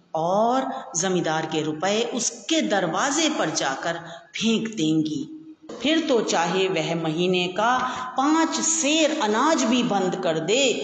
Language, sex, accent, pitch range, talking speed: Hindi, female, native, 170-255 Hz, 125 wpm